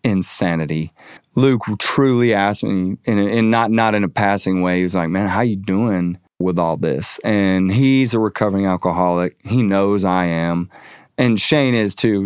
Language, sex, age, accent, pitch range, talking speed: English, male, 30-49, American, 95-115 Hz, 170 wpm